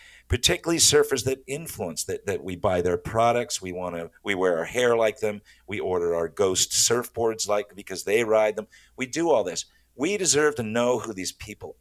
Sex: male